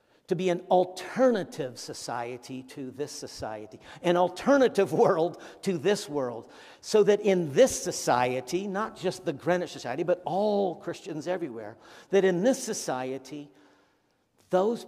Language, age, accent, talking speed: English, 50-69, American, 135 wpm